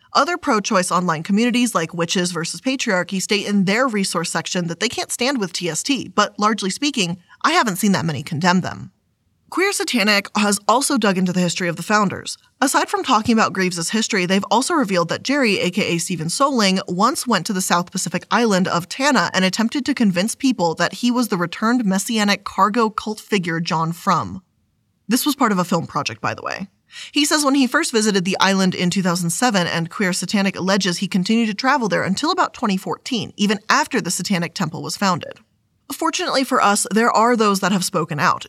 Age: 20-39